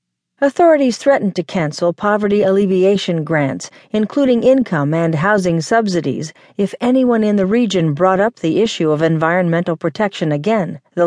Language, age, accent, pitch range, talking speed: English, 40-59, American, 165-230 Hz, 140 wpm